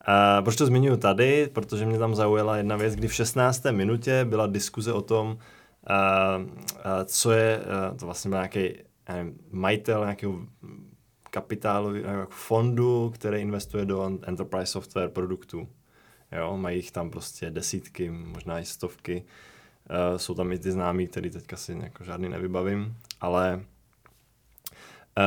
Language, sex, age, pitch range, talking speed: Czech, male, 20-39, 90-110 Hz, 140 wpm